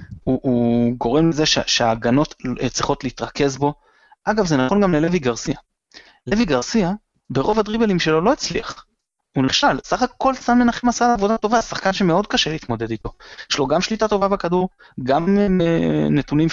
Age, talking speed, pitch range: 20-39, 155 wpm, 120-175 Hz